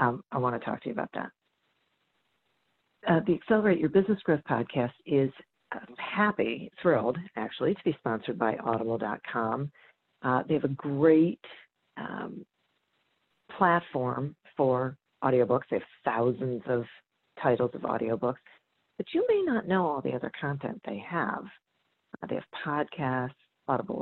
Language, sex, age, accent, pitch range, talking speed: English, female, 40-59, American, 125-180 Hz, 140 wpm